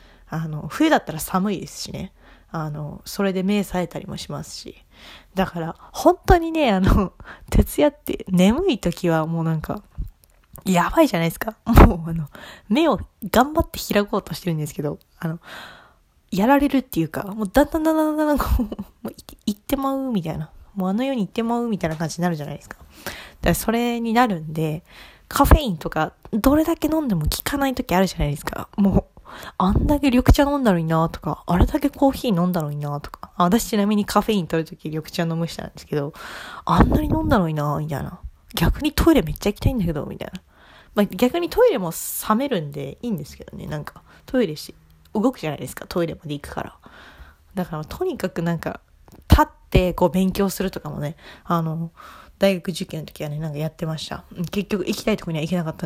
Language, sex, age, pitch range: Japanese, female, 20-39, 160-235 Hz